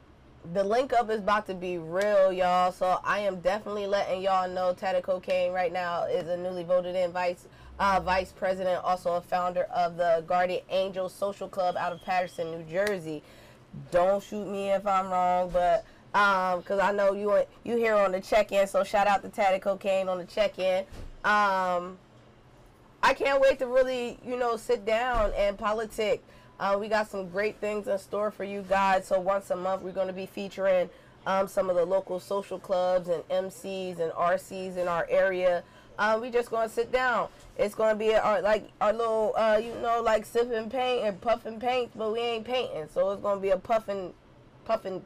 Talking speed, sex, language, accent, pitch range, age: 200 wpm, female, English, American, 180-215 Hz, 20-39